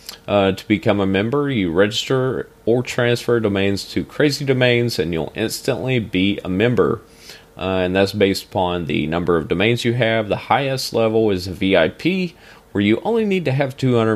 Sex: male